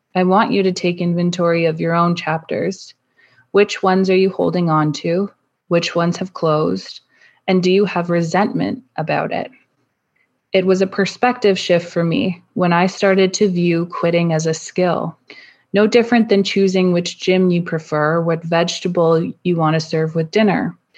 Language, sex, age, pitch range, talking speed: English, female, 20-39, 170-205 Hz, 170 wpm